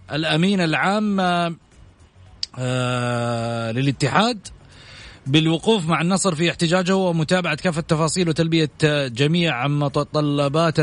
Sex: male